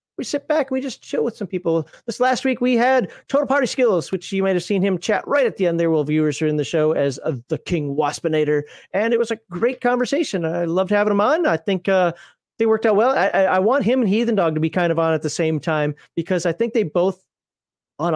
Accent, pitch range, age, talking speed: American, 170-225 Hz, 40-59, 270 wpm